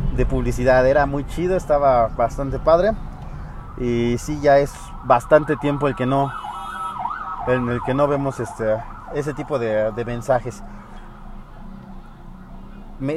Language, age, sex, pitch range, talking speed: Spanish, 30-49, male, 120-150 Hz, 130 wpm